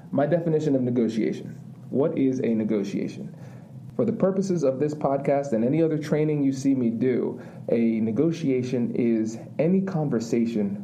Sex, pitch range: male, 110-160 Hz